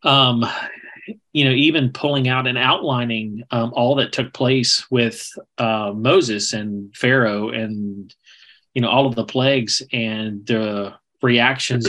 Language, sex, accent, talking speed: English, male, American, 140 wpm